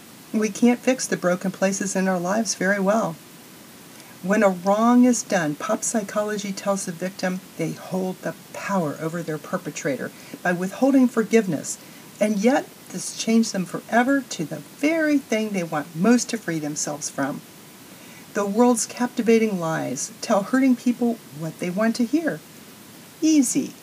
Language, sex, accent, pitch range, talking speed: English, female, American, 180-245 Hz, 155 wpm